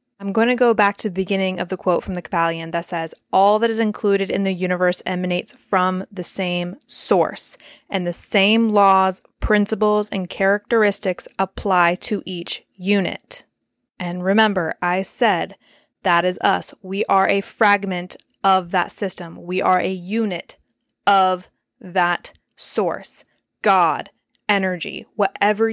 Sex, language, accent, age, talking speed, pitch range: female, English, American, 20-39, 145 wpm, 185-215 Hz